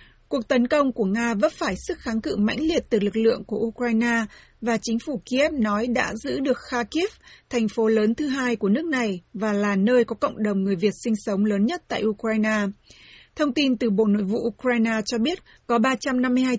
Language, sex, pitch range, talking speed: Vietnamese, female, 215-250 Hz, 215 wpm